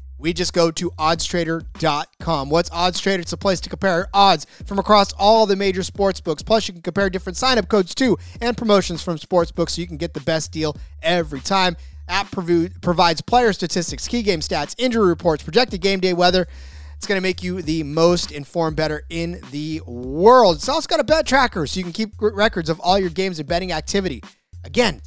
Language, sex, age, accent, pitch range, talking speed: English, male, 30-49, American, 150-195 Hz, 200 wpm